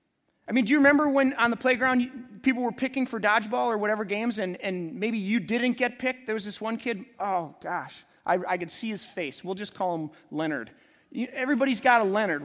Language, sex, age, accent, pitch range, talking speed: English, male, 30-49, American, 225-325 Hz, 220 wpm